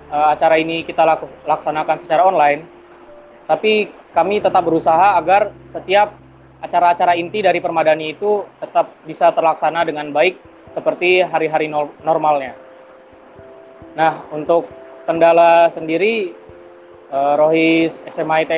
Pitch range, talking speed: 150-180 Hz, 100 wpm